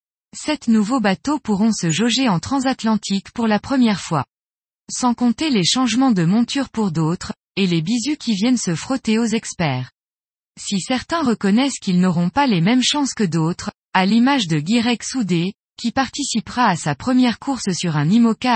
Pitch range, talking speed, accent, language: 175-245 Hz, 175 wpm, French, French